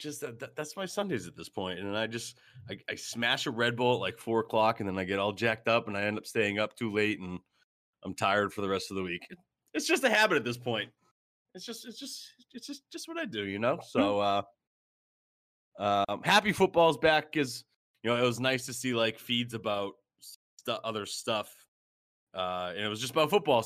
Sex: male